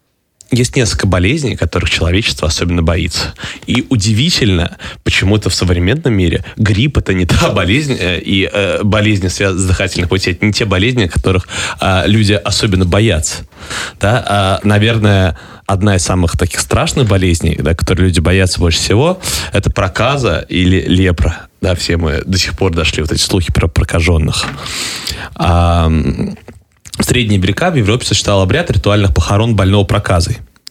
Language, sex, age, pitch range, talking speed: Russian, male, 20-39, 90-105 Hz, 145 wpm